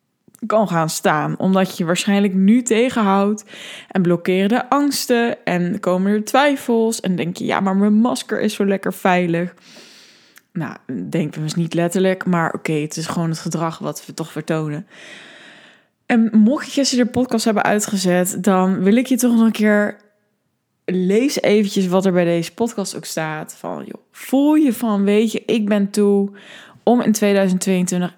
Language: Dutch